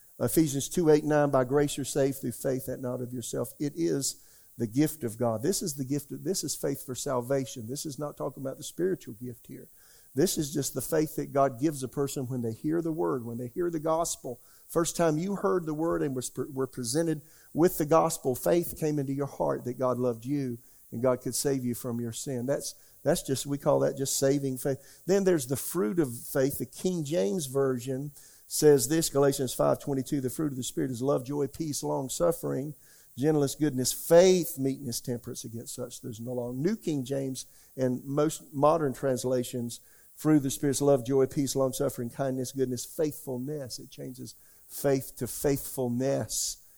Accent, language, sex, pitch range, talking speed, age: American, English, male, 125-150 Hz, 200 wpm, 50-69